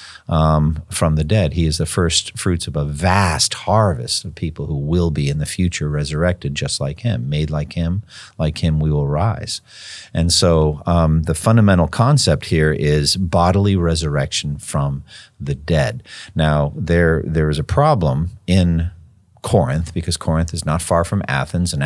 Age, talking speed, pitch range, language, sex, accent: 50-69, 170 wpm, 75-100 Hz, English, male, American